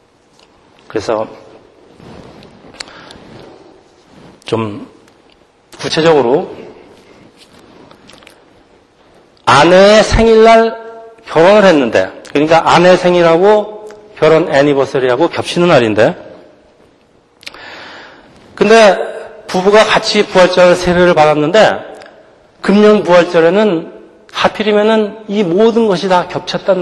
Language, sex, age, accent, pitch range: Korean, male, 40-59, native, 145-205 Hz